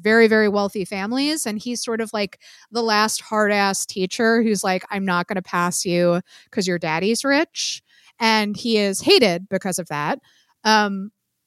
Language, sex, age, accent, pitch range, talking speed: English, female, 30-49, American, 195-245 Hz, 175 wpm